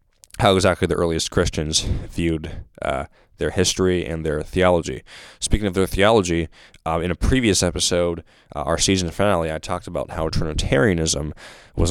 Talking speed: 155 wpm